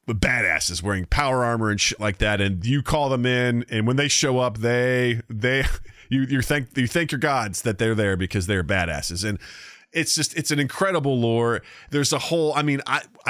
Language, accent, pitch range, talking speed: English, American, 105-140 Hz, 210 wpm